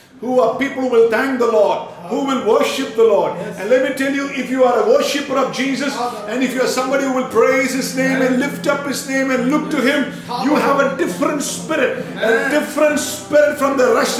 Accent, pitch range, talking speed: Indian, 225-300 Hz, 235 wpm